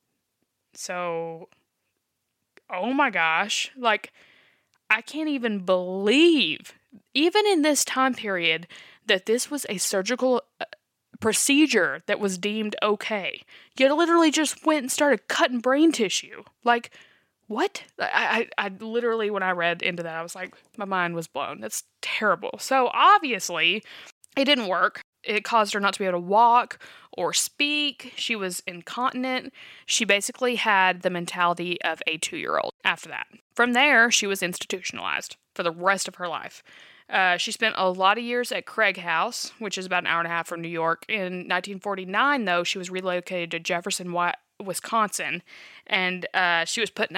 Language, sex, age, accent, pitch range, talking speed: English, female, 20-39, American, 175-235 Hz, 165 wpm